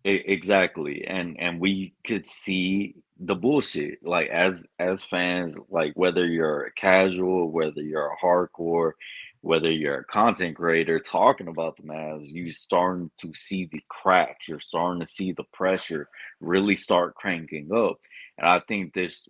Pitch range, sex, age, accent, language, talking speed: 80-95 Hz, male, 20-39, American, English, 155 wpm